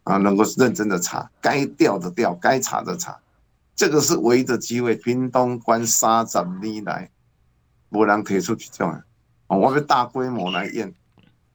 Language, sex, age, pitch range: Chinese, male, 50-69, 110-145 Hz